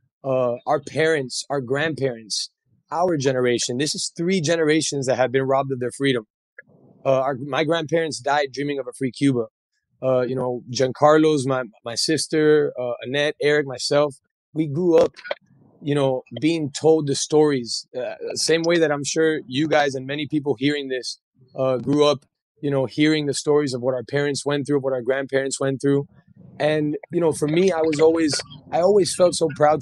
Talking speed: 190 wpm